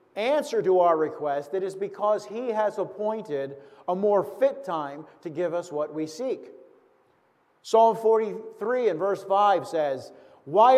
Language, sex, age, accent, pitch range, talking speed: English, male, 50-69, American, 180-230 Hz, 150 wpm